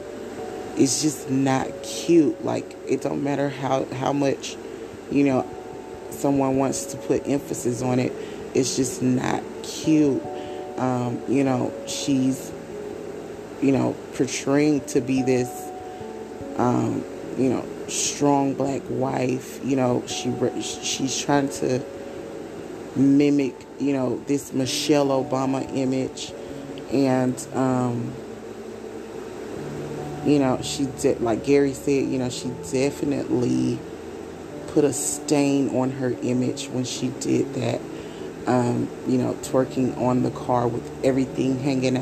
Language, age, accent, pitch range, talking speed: English, 20-39, American, 125-140 Hz, 125 wpm